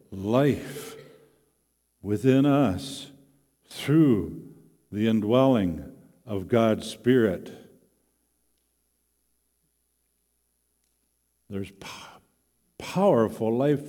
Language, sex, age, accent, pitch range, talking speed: English, male, 50-69, American, 95-130 Hz, 55 wpm